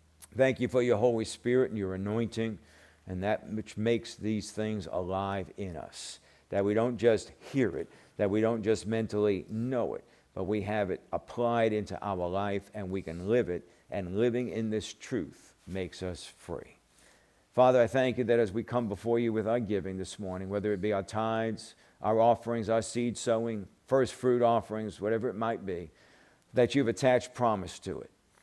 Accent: American